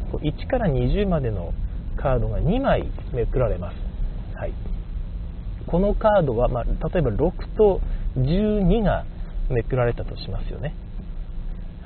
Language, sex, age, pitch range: Japanese, male, 40-59, 95-150 Hz